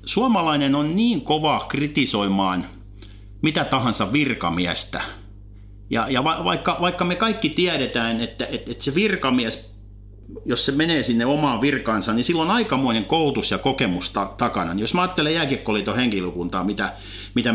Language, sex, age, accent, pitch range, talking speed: Finnish, male, 50-69, native, 100-150 Hz, 145 wpm